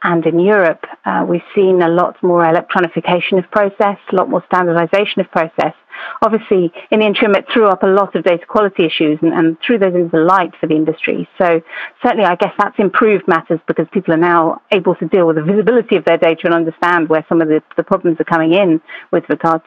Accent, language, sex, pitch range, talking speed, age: British, English, female, 165-200 Hz, 225 wpm, 40-59